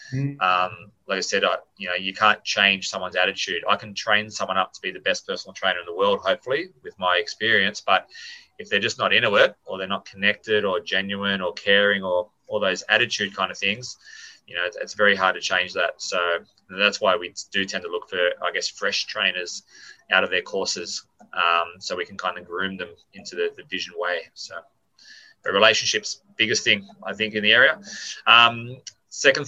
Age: 20-39